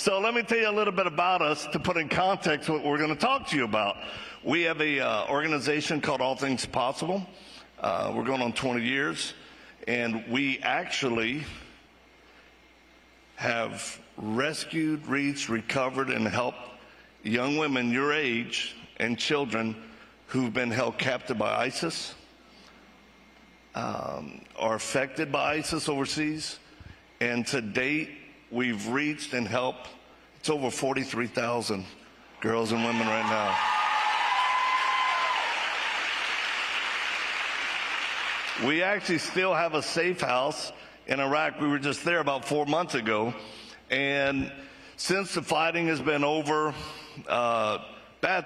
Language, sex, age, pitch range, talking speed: English, male, 50-69, 125-160 Hz, 130 wpm